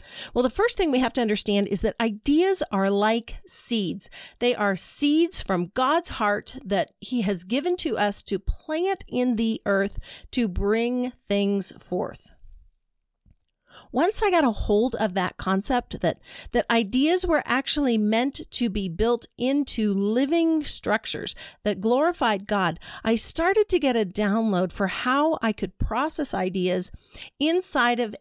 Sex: female